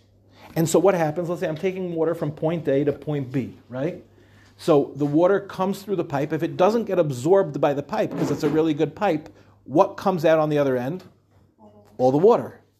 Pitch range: 125-170 Hz